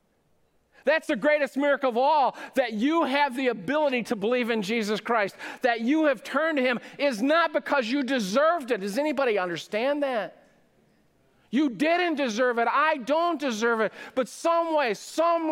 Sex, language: male, English